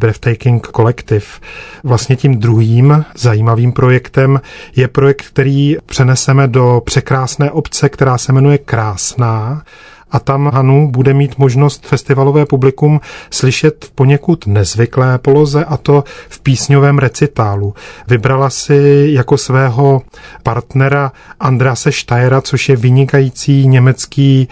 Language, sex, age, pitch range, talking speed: Czech, male, 40-59, 125-140 Hz, 115 wpm